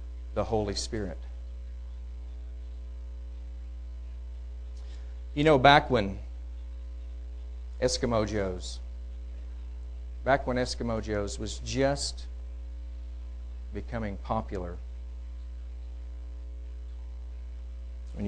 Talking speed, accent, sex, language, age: 55 wpm, American, male, English, 50-69